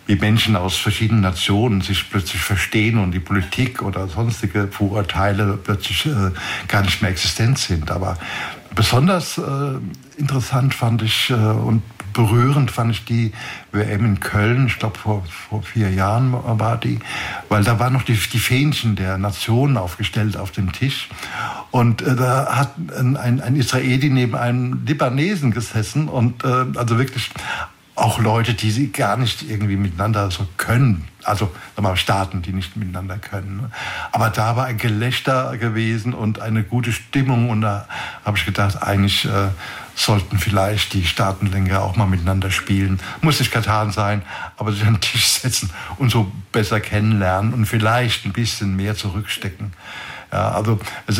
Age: 60-79